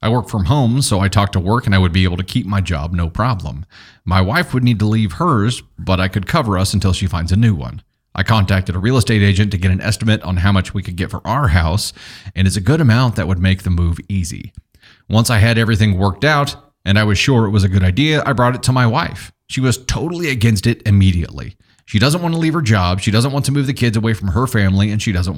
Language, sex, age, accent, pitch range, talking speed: English, male, 30-49, American, 95-130 Hz, 275 wpm